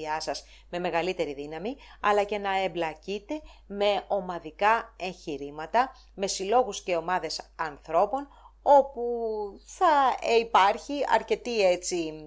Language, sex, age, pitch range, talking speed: English, female, 30-49, 165-240 Hz, 100 wpm